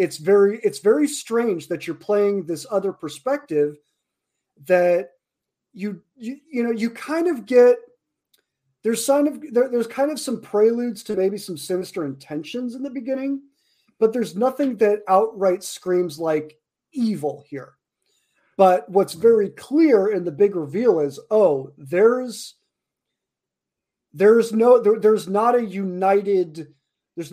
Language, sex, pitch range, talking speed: English, male, 165-230 Hz, 145 wpm